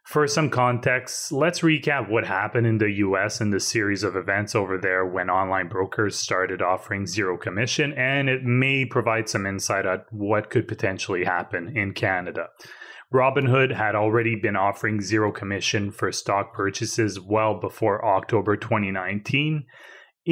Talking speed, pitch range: 150 wpm, 100-125 Hz